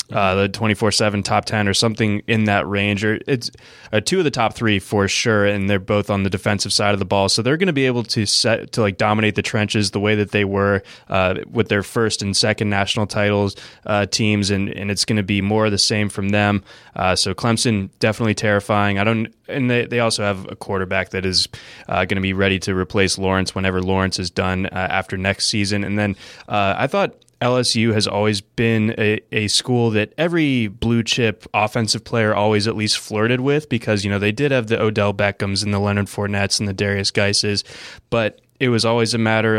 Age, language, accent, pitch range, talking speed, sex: 20-39, English, American, 100-115 Hz, 225 wpm, male